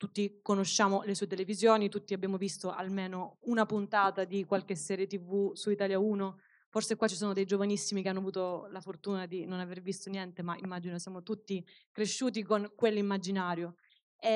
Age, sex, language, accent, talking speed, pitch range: 20-39, female, Italian, native, 170 wpm, 185-215 Hz